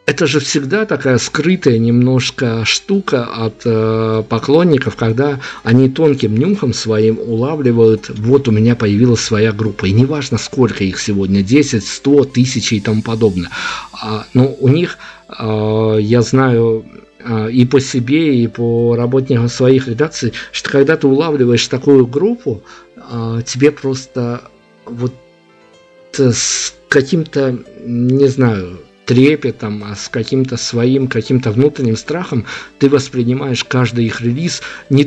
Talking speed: 130 wpm